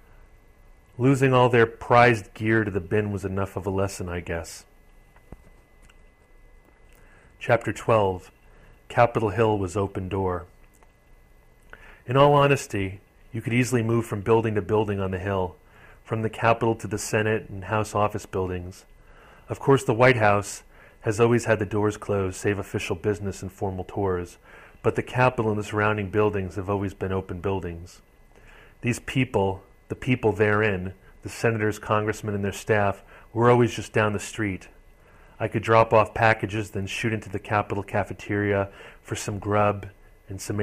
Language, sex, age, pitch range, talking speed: English, male, 30-49, 95-110 Hz, 160 wpm